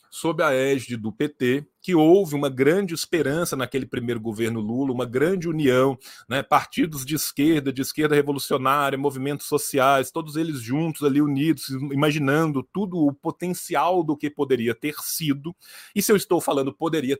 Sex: male